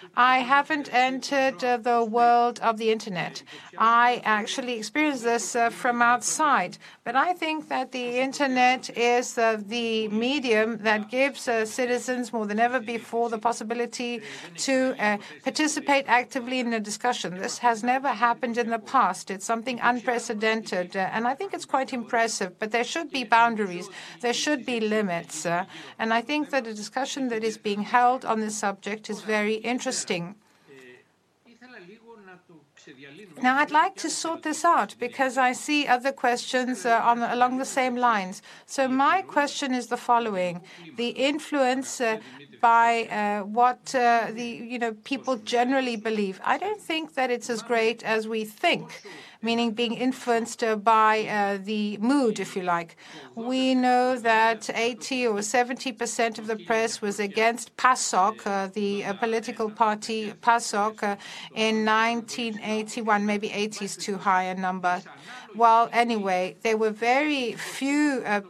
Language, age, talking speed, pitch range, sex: Greek, 60-79, 160 wpm, 215-255 Hz, female